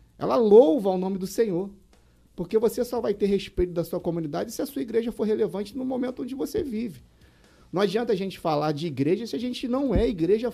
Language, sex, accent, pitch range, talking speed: Portuguese, male, Brazilian, 160-245 Hz, 220 wpm